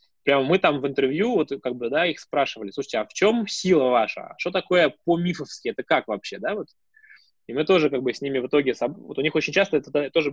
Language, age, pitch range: Russian, 20-39, 125-175 Hz